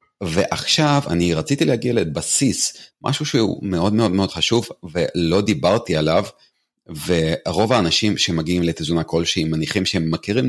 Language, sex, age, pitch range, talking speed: Hebrew, male, 40-59, 80-100 Hz, 125 wpm